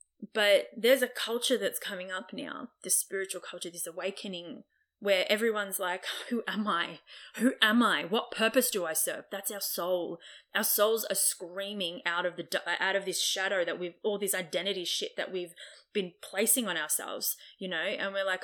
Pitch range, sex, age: 180-225 Hz, female, 20-39